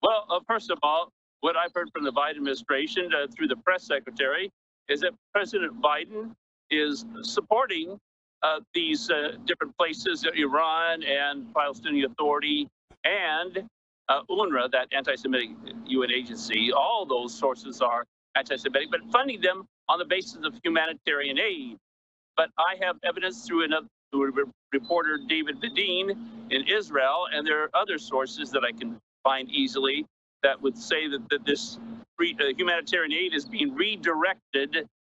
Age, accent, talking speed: 50-69, American, 145 wpm